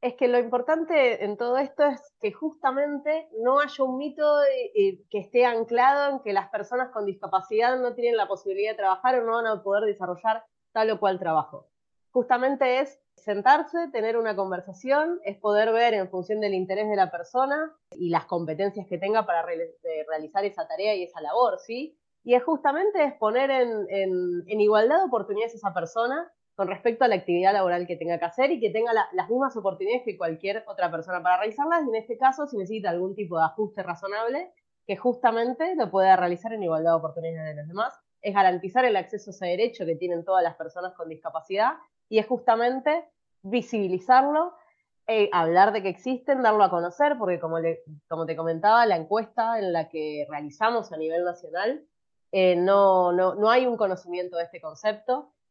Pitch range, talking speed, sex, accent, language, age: 185-255 Hz, 195 wpm, female, Argentinian, Spanish, 20-39